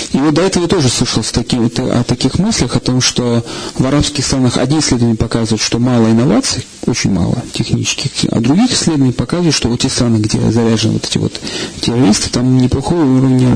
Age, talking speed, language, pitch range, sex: 40-59, 180 wpm, Russian, 120-155 Hz, male